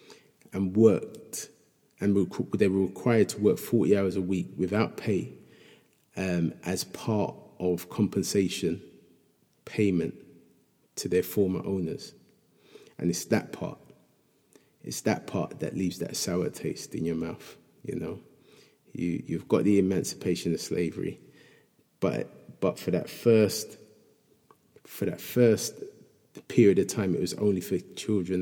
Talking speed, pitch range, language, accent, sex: 135 wpm, 90-105 Hz, English, British, male